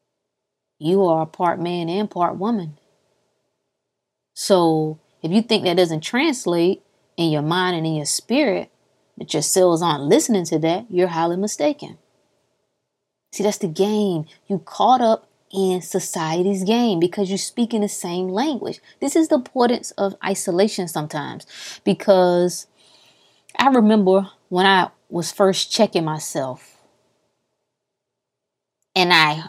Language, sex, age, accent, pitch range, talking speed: English, female, 20-39, American, 175-230 Hz, 135 wpm